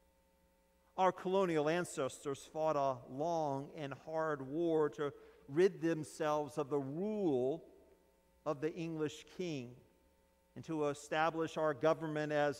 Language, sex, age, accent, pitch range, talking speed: English, male, 50-69, American, 130-165 Hz, 120 wpm